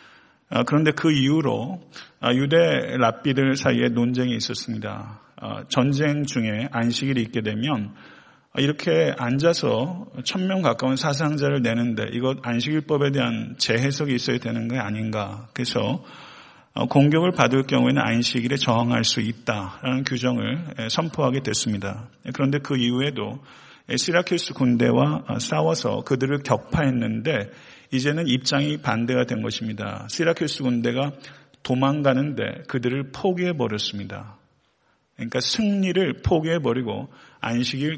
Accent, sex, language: native, male, Korean